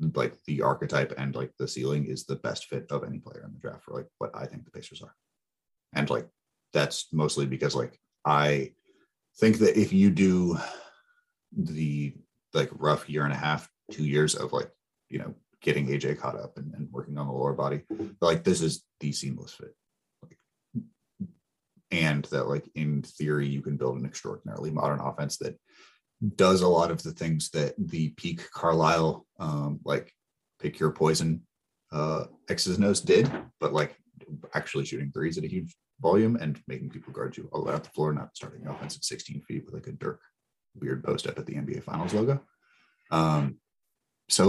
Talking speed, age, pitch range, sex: 185 wpm, 30-49, 70-90 Hz, male